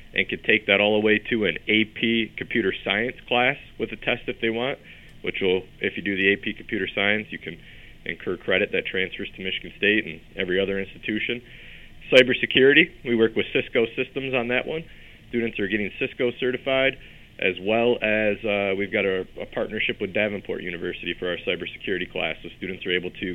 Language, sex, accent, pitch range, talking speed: English, male, American, 100-125 Hz, 195 wpm